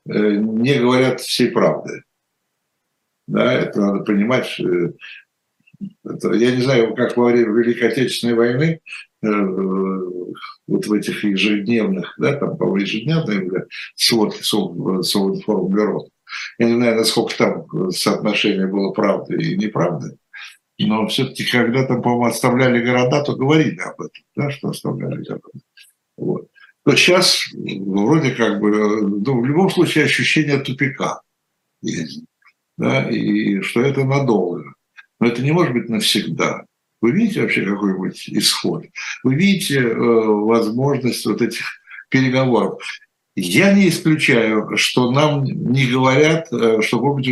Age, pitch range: 60-79, 105-135 Hz